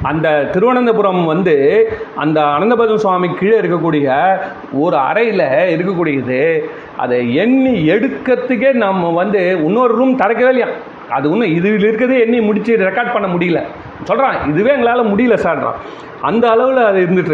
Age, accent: 40-59, native